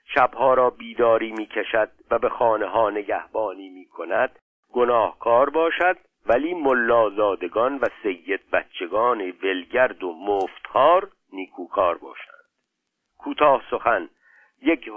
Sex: male